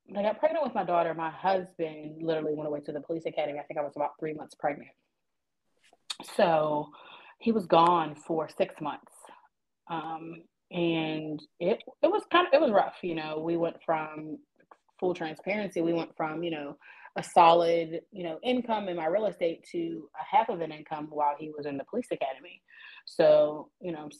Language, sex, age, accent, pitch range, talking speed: English, female, 30-49, American, 150-185 Hz, 195 wpm